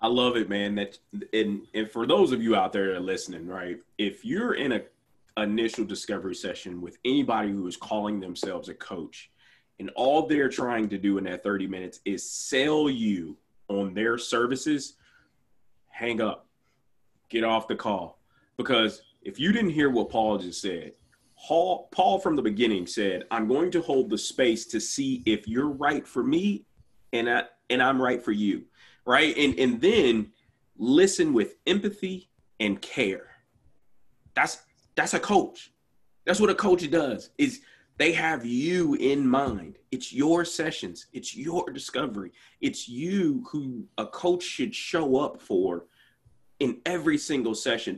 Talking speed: 165 wpm